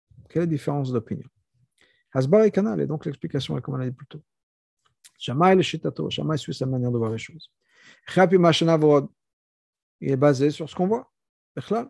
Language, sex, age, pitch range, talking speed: French, male, 50-69, 145-190 Hz, 160 wpm